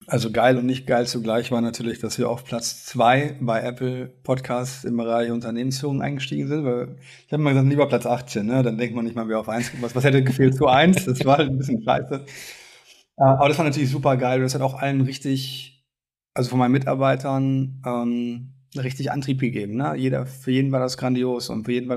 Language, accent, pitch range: German, German, 120-135 Hz